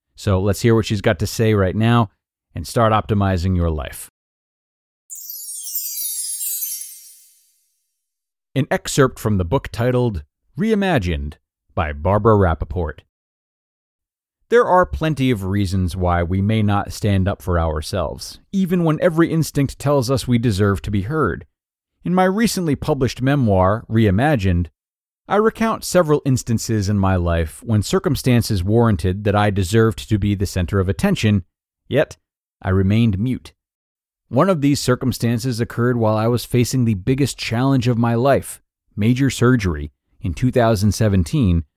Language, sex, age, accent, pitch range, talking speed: English, male, 40-59, American, 90-125 Hz, 140 wpm